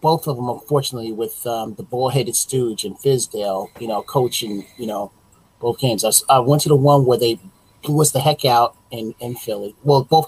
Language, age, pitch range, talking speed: English, 30-49, 110-140 Hz, 205 wpm